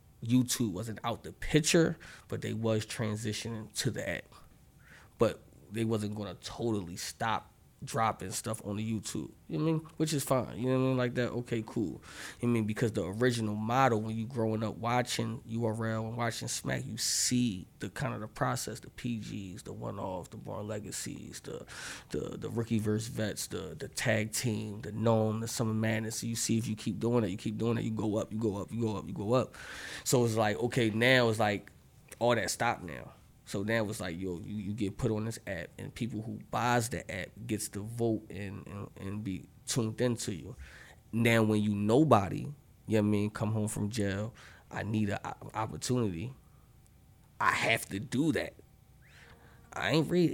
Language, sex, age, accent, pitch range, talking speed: English, male, 20-39, American, 105-120 Hz, 210 wpm